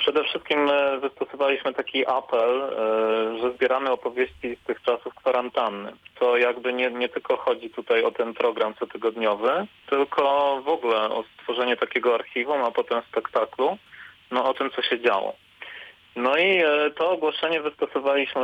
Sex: male